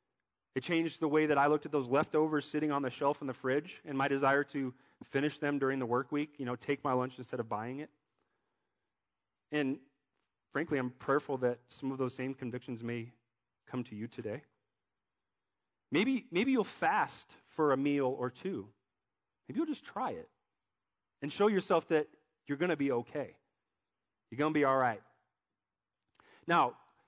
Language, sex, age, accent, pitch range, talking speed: English, male, 30-49, American, 130-165 Hz, 180 wpm